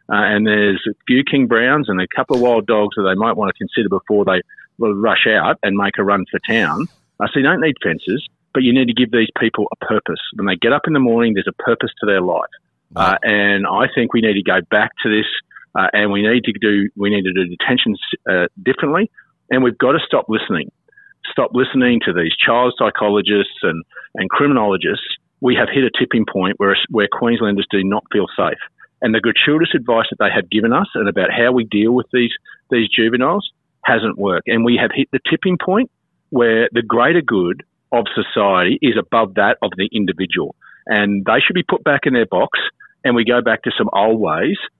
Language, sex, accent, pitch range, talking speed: English, male, Australian, 105-125 Hz, 220 wpm